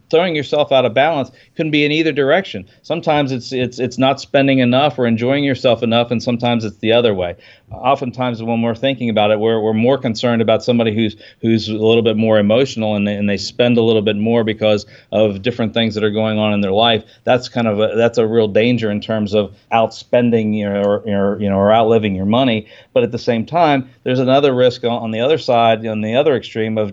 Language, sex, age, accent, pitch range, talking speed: English, male, 40-59, American, 110-125 Hz, 235 wpm